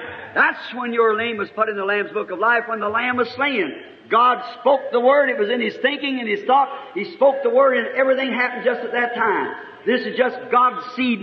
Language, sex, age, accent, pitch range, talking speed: English, male, 50-69, American, 230-285 Hz, 240 wpm